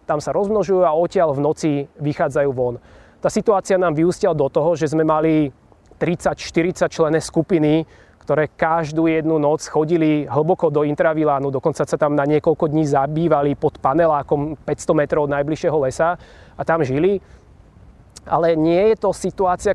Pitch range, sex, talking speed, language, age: 140-170 Hz, male, 155 wpm, Slovak, 20-39